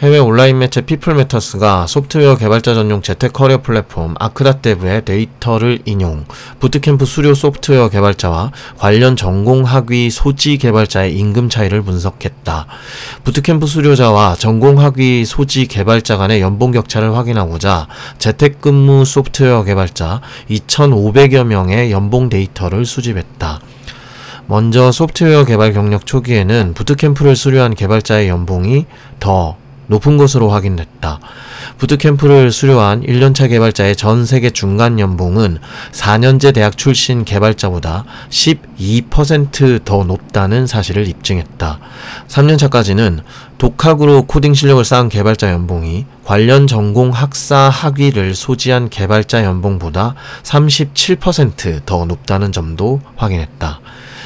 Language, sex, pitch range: Korean, male, 100-135 Hz